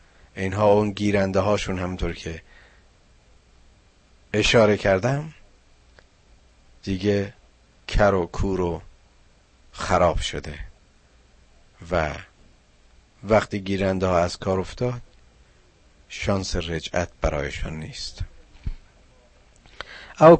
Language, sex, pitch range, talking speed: Persian, male, 75-105 Hz, 80 wpm